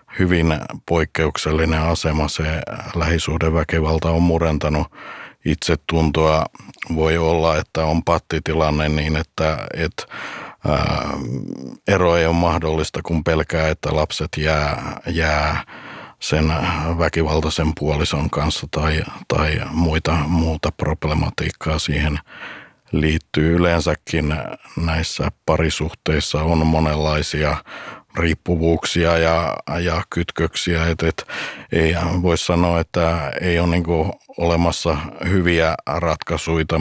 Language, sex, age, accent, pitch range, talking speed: Finnish, male, 60-79, native, 80-85 Hz, 95 wpm